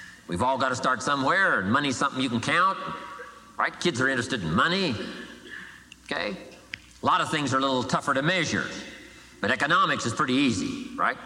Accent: American